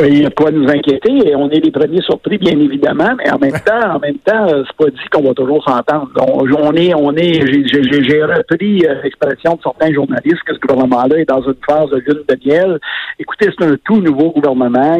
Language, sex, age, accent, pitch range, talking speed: French, male, 50-69, Canadian, 140-190 Hz, 230 wpm